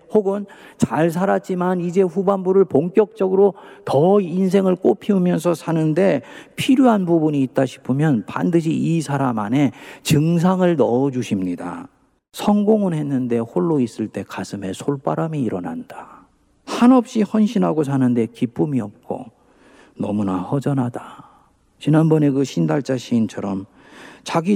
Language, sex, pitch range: Korean, male, 115-185 Hz